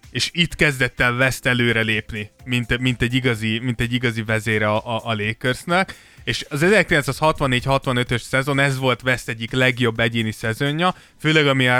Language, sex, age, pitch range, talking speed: Hungarian, male, 20-39, 115-140 Hz, 160 wpm